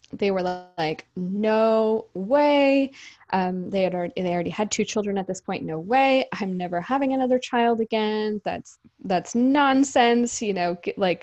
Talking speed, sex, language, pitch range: 160 wpm, female, English, 185-245 Hz